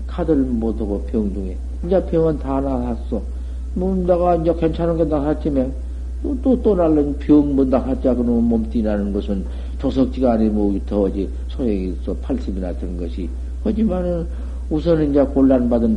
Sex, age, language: male, 50-69, Korean